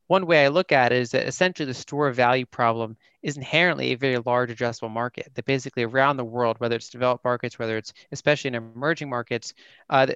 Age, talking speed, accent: 20-39, 220 wpm, American